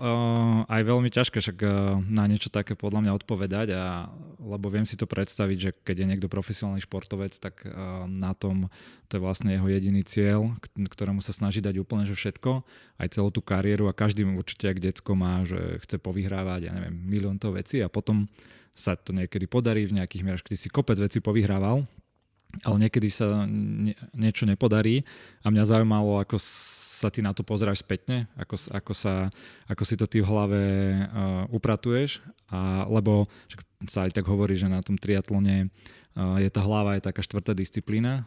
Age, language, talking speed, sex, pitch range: 20-39, Slovak, 180 wpm, male, 95-110 Hz